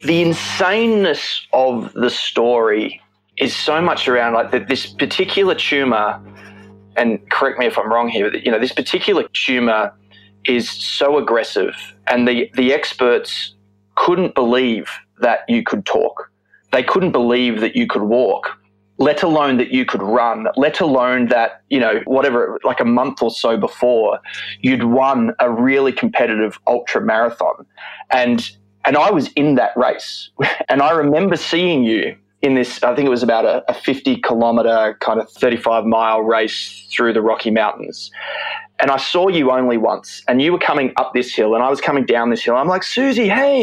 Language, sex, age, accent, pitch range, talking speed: English, male, 20-39, Australian, 115-170 Hz, 170 wpm